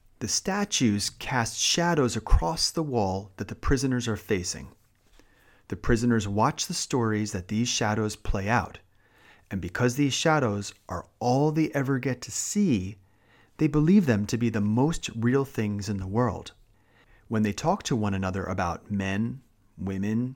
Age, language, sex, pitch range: 30-49, Japanese, male, 100-135 Hz